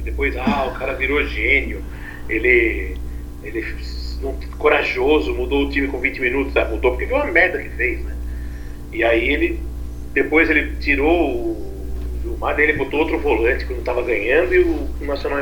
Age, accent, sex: 40-59, Brazilian, male